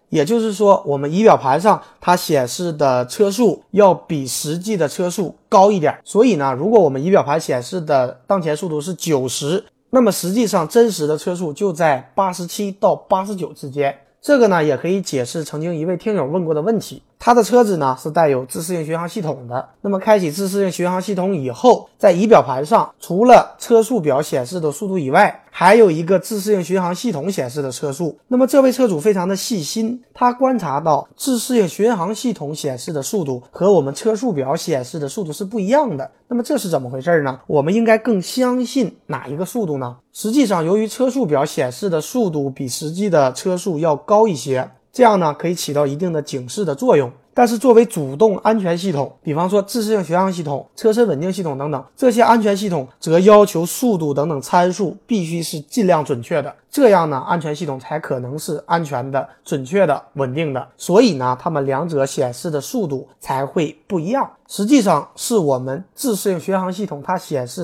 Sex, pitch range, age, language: male, 145-215 Hz, 20-39, Chinese